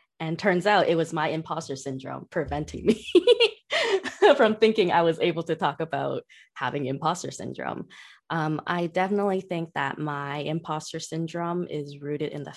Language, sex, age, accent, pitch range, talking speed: English, female, 20-39, American, 145-170 Hz, 160 wpm